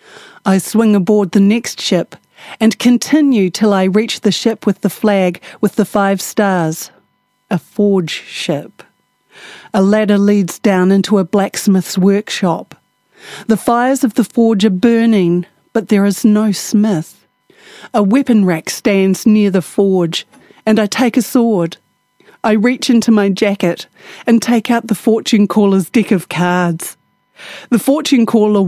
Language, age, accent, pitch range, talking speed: English, 40-59, Australian, 190-230 Hz, 150 wpm